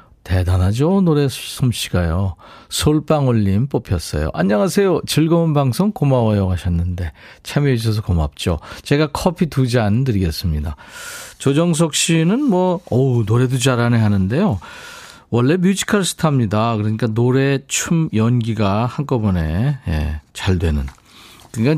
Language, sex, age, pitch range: Korean, male, 40-59, 100-150 Hz